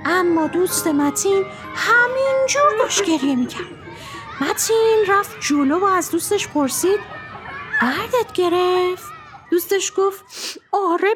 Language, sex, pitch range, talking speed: Persian, female, 340-460 Hz, 100 wpm